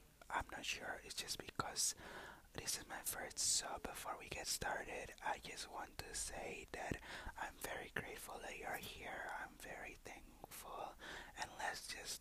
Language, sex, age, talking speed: English, male, 20-39, 160 wpm